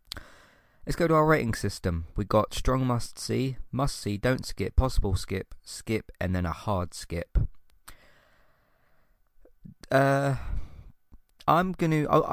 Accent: British